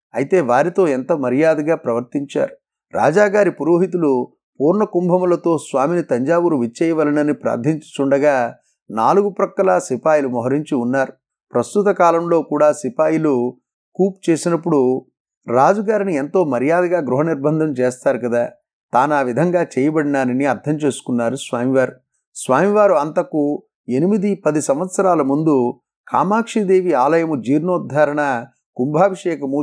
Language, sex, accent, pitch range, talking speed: Telugu, male, native, 135-180 Hz, 95 wpm